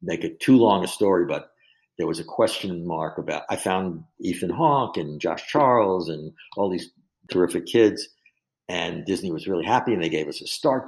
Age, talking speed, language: 60-79, 200 wpm, English